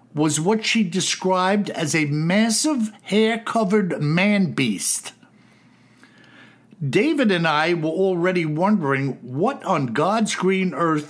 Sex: male